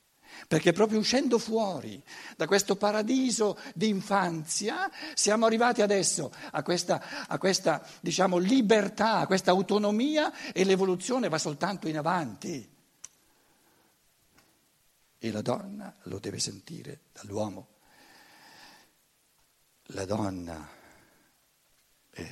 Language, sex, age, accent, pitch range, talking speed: Italian, male, 60-79, native, 135-210 Hz, 100 wpm